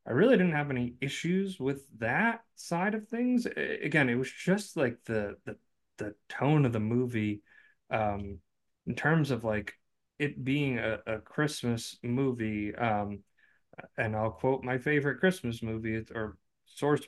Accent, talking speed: American, 155 wpm